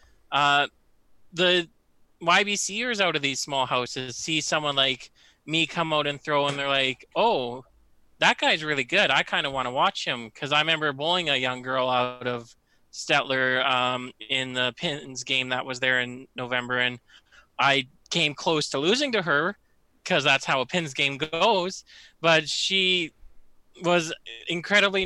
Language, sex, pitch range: English, male, 135-175 Hz